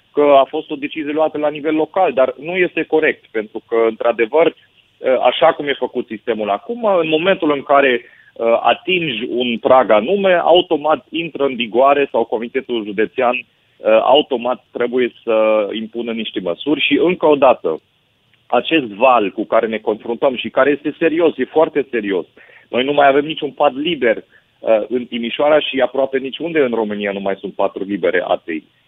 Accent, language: native, Romanian